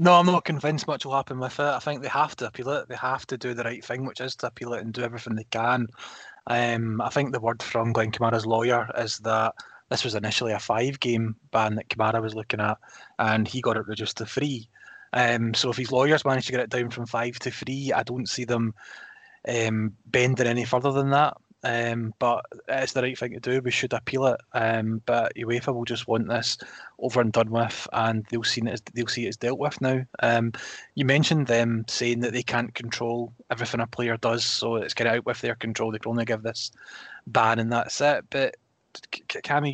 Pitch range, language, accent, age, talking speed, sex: 115-130 Hz, English, British, 20-39, 235 wpm, male